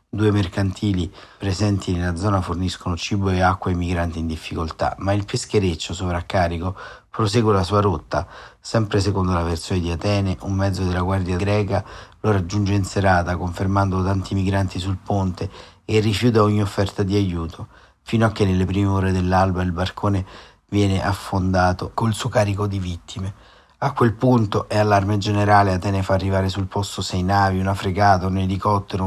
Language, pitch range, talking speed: Italian, 90-100 Hz, 165 wpm